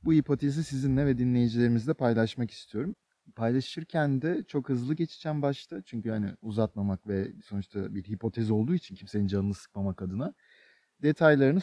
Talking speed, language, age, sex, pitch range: 140 wpm, Turkish, 40-59, male, 110-145 Hz